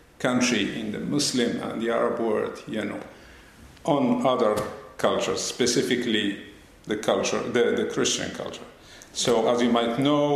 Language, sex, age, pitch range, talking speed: Finnish, male, 50-69, 115-135 Hz, 145 wpm